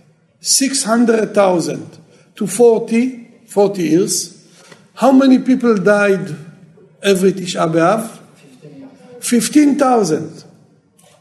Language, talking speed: Hebrew, 80 wpm